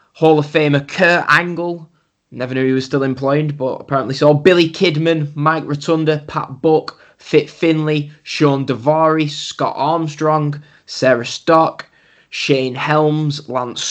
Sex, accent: male, British